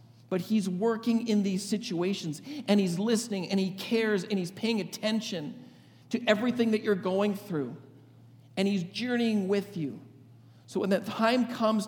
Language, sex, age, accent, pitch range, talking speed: English, male, 50-69, American, 150-205 Hz, 160 wpm